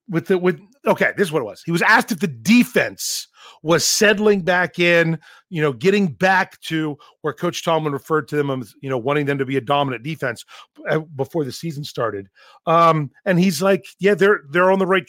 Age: 40-59